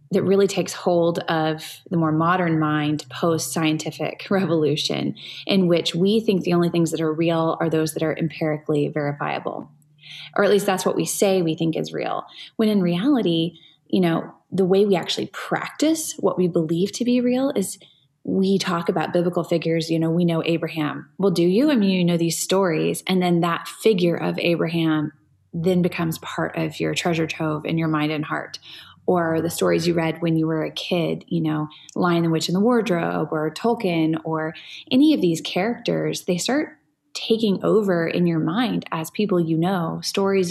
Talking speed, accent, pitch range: 195 wpm, American, 160-190 Hz